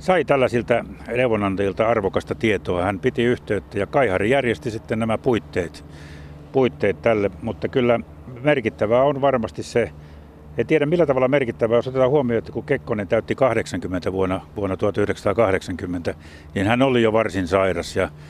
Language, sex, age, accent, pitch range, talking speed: Finnish, male, 60-79, native, 95-120 Hz, 150 wpm